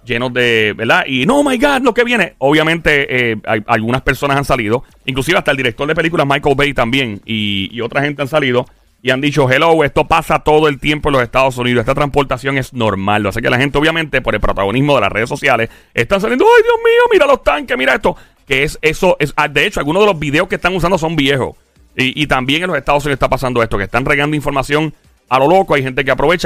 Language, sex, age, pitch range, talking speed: Spanish, male, 30-49, 125-165 Hz, 245 wpm